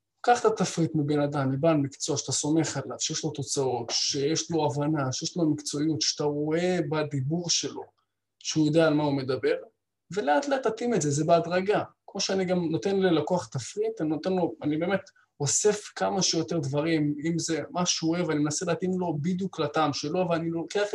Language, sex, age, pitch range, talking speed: Hebrew, male, 20-39, 150-185 Hz, 190 wpm